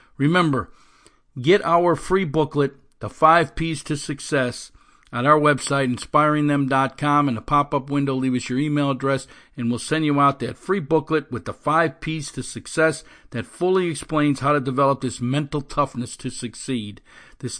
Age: 50-69